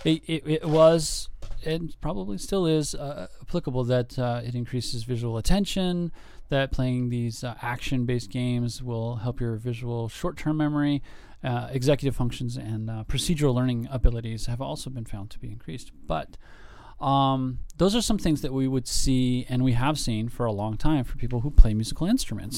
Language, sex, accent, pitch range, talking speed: English, male, American, 110-135 Hz, 180 wpm